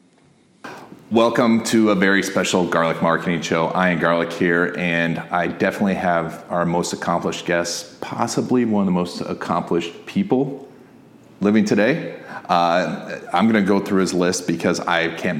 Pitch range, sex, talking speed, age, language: 90-120 Hz, male, 155 wpm, 40-59, English